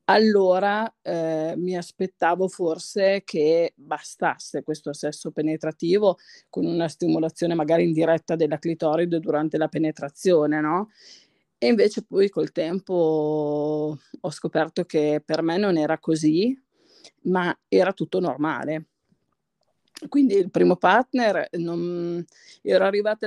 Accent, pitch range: native, 160-200 Hz